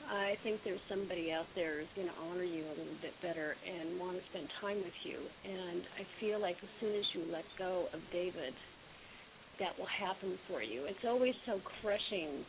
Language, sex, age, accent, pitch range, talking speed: English, female, 50-69, American, 180-210 Hz, 205 wpm